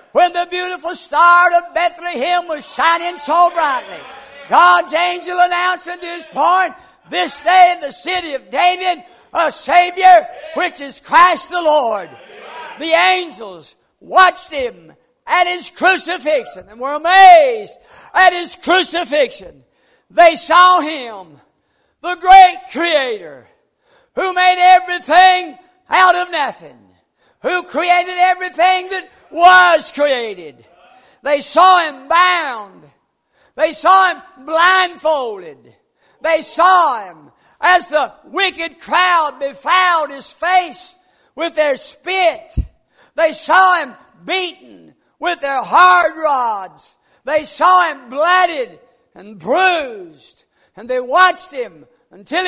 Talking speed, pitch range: 115 wpm, 315-365 Hz